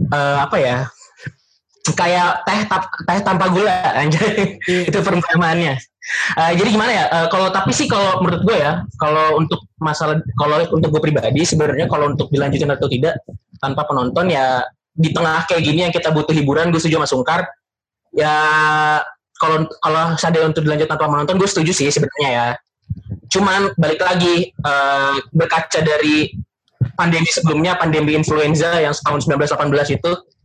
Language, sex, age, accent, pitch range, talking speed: Indonesian, male, 20-39, native, 150-180 Hz, 155 wpm